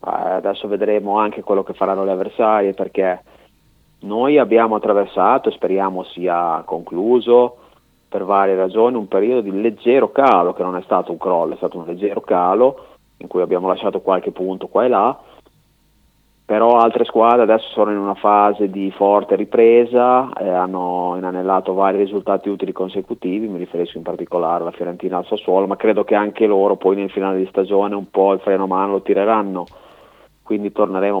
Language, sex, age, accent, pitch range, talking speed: Italian, male, 30-49, native, 95-110 Hz, 170 wpm